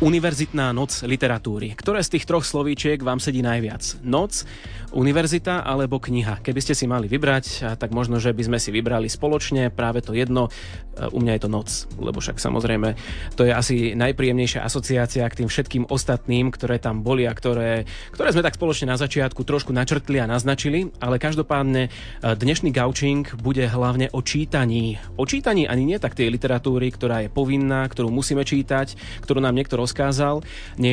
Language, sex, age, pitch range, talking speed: Slovak, male, 30-49, 120-140 Hz, 170 wpm